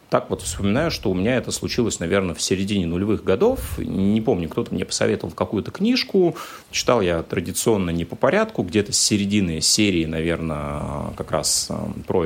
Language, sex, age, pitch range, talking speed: Russian, male, 30-49, 80-105 Hz, 165 wpm